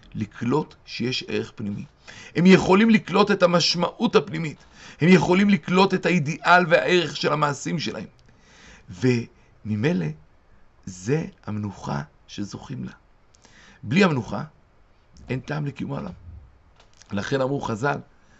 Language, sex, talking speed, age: Hebrew, male, 110 wpm, 50-69